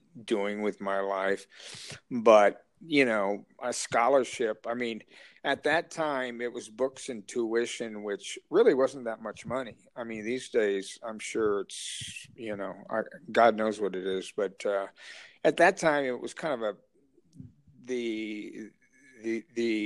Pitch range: 105-135 Hz